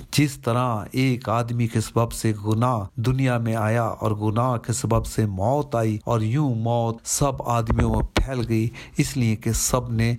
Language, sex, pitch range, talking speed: Urdu, male, 110-125 Hz, 185 wpm